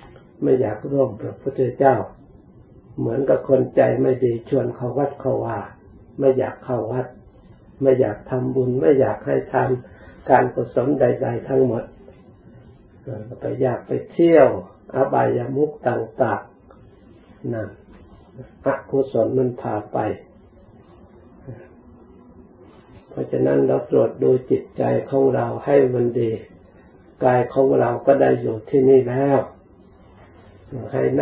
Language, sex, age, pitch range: Thai, male, 60-79, 105-135 Hz